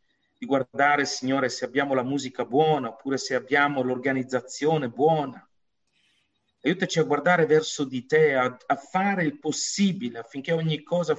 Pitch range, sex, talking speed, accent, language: 130-165 Hz, male, 145 wpm, native, Italian